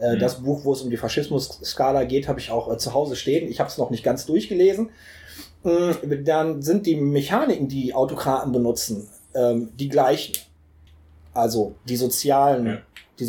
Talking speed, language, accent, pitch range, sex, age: 150 wpm, German, German, 115-145 Hz, male, 30-49